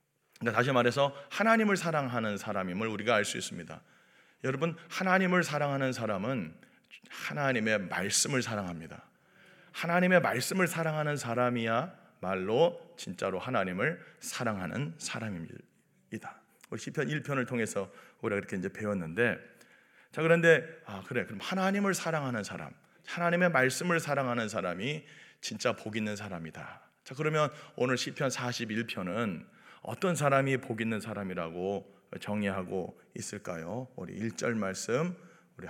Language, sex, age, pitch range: Korean, male, 40-59, 110-160 Hz